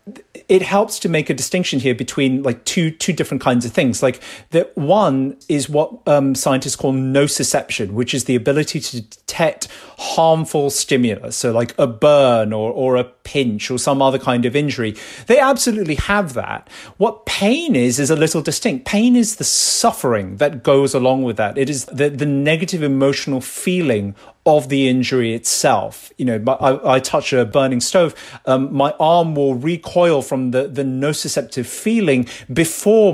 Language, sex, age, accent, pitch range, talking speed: English, male, 40-59, British, 125-155 Hz, 175 wpm